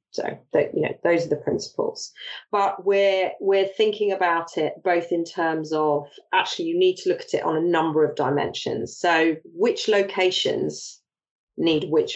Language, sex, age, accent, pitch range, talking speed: English, female, 30-49, British, 155-210 Hz, 175 wpm